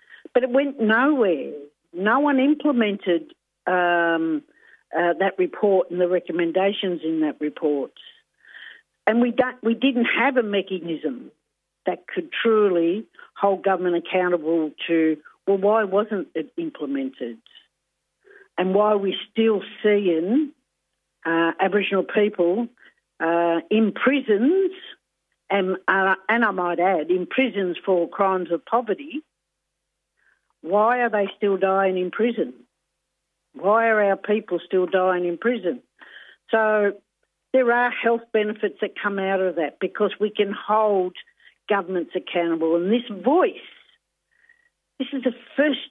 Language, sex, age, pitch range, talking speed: English, female, 60-79, 180-240 Hz, 130 wpm